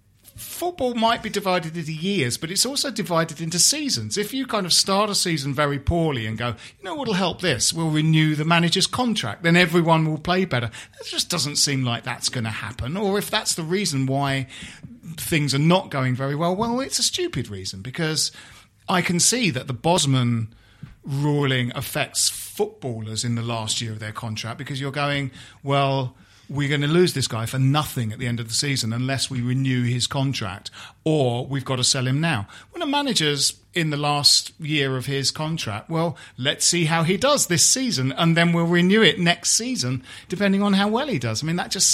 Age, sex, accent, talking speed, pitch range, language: 40-59, male, British, 210 wpm, 130-180 Hz, English